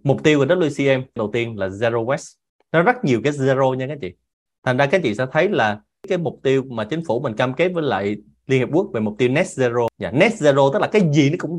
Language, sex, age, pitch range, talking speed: Vietnamese, male, 20-39, 120-165 Hz, 270 wpm